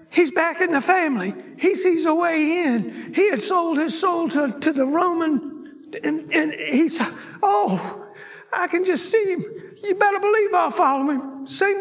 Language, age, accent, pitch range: English, 60-79, American, 260-360 Hz